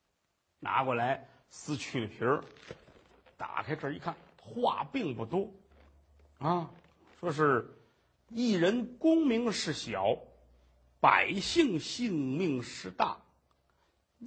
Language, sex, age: Chinese, male, 50-69